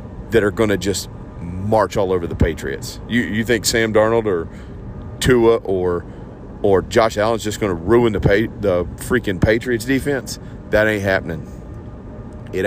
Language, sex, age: English, male, 40-59